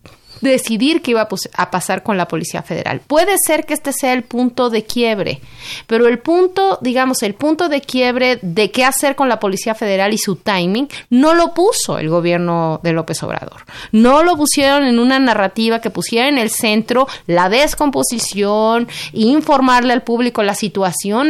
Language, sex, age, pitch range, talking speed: Spanish, female, 30-49, 200-265 Hz, 175 wpm